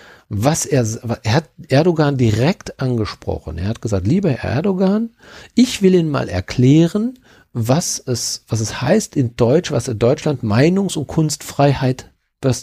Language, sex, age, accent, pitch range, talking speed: German, male, 50-69, German, 120-165 Hz, 150 wpm